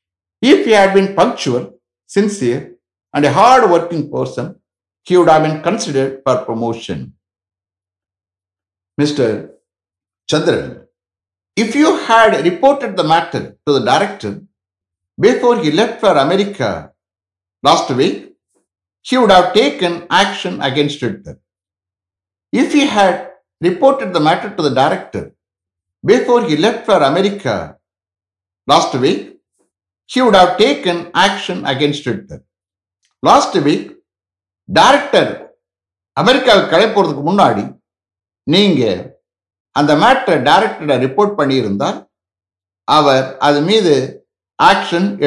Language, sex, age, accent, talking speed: English, male, 60-79, Indian, 105 wpm